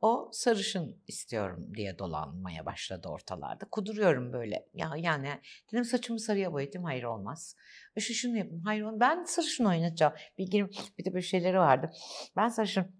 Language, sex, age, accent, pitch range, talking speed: Turkish, female, 60-79, native, 165-265 Hz, 150 wpm